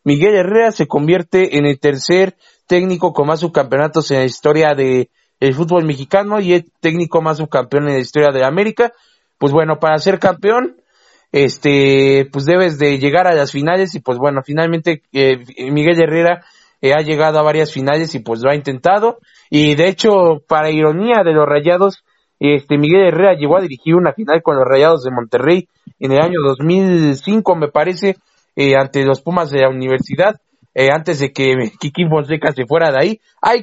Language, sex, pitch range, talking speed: Spanish, male, 140-185 Hz, 185 wpm